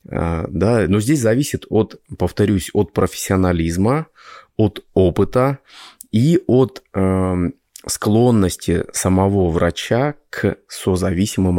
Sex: male